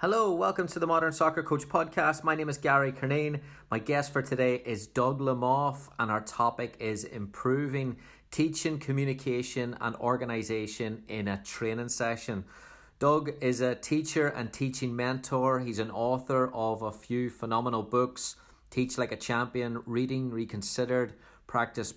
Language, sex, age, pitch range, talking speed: English, male, 30-49, 110-125 Hz, 150 wpm